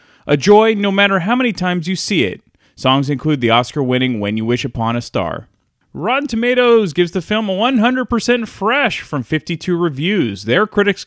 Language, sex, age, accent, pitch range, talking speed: English, male, 30-49, American, 125-190 Hz, 180 wpm